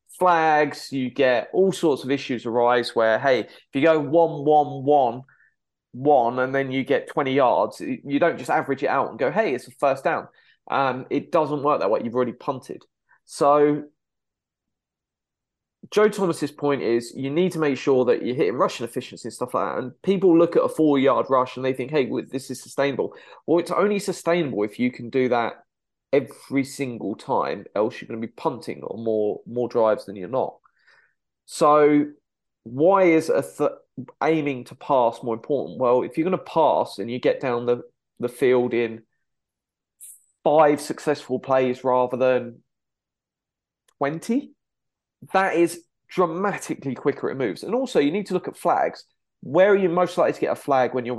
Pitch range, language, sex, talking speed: 125-170 Hz, English, male, 185 wpm